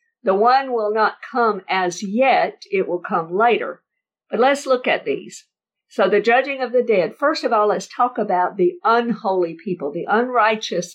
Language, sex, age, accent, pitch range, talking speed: English, female, 50-69, American, 185-255 Hz, 180 wpm